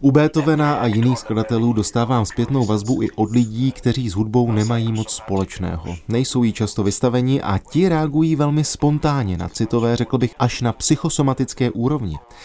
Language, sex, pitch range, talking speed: Czech, male, 105-140 Hz, 165 wpm